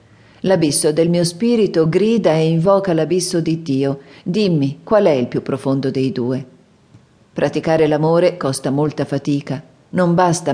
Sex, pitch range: female, 145-180 Hz